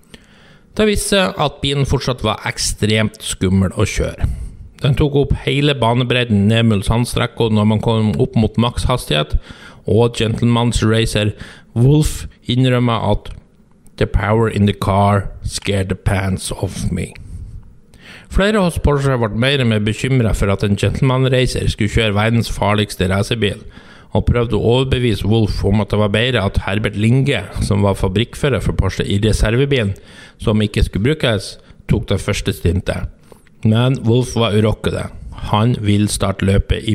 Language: English